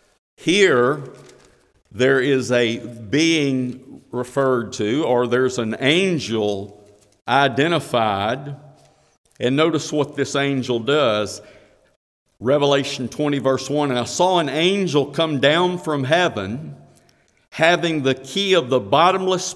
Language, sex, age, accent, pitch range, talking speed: English, male, 50-69, American, 120-160 Hz, 115 wpm